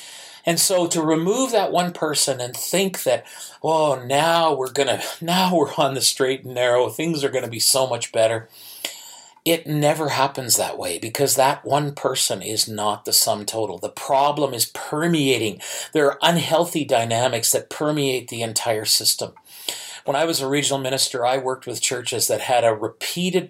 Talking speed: 175 wpm